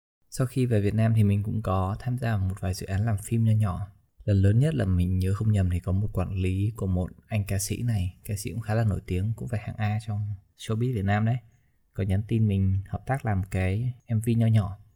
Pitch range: 95-115 Hz